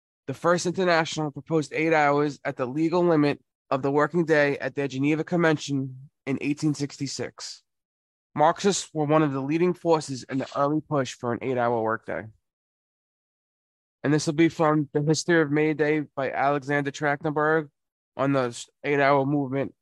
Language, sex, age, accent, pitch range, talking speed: English, male, 20-39, American, 135-160 Hz, 155 wpm